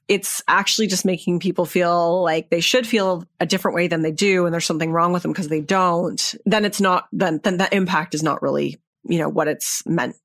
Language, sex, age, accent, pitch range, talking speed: English, female, 30-49, American, 170-210 Hz, 235 wpm